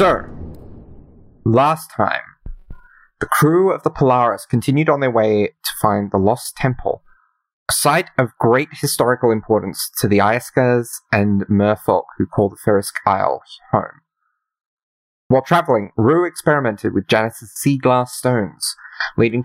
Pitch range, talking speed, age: 100-125 Hz, 135 wpm, 30-49